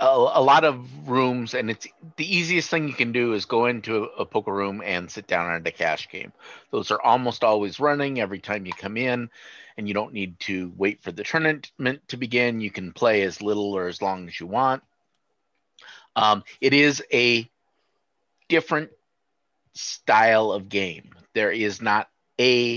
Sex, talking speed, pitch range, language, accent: male, 180 wpm, 95-125 Hz, English, American